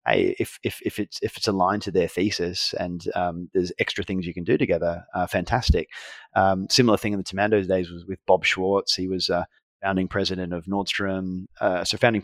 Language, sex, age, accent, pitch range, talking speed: English, male, 30-49, Australian, 90-105 Hz, 210 wpm